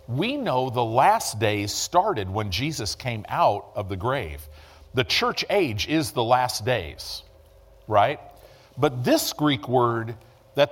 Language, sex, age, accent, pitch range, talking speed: English, male, 50-69, American, 95-145 Hz, 145 wpm